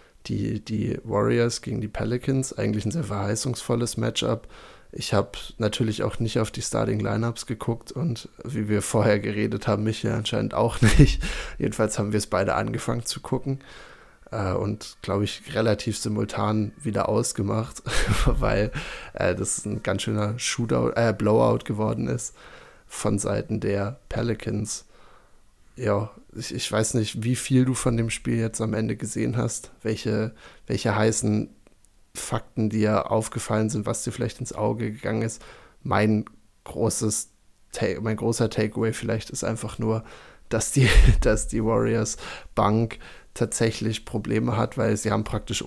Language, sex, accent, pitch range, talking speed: German, male, German, 105-115 Hz, 150 wpm